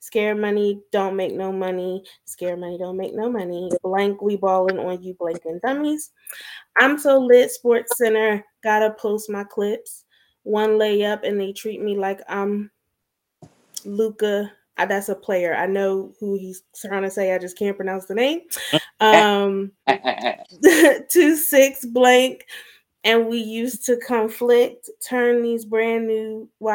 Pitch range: 200-220 Hz